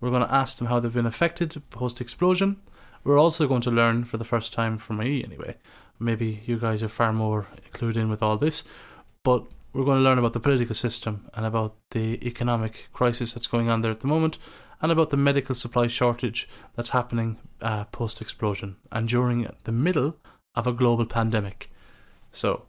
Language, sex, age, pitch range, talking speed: English, male, 30-49, 115-135 Hz, 195 wpm